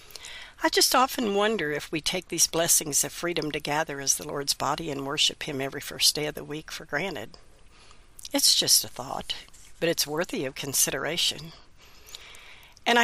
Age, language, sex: 60-79, English, female